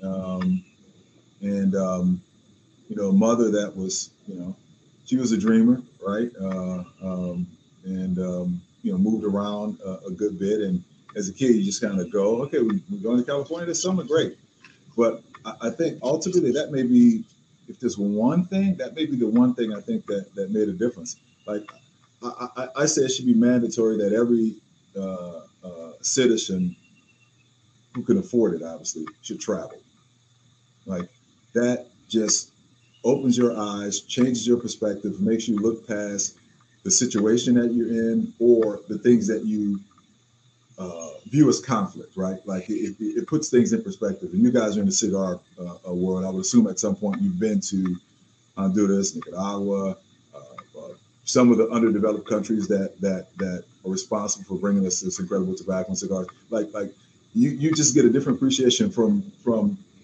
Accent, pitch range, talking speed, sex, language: American, 100-130 Hz, 180 wpm, male, English